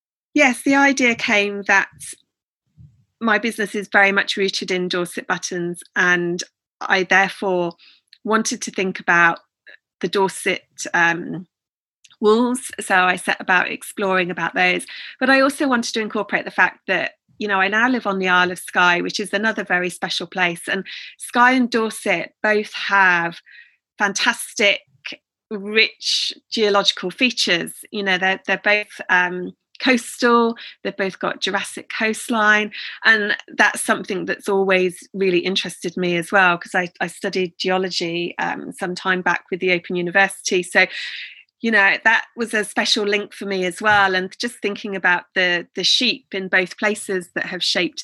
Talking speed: 160 wpm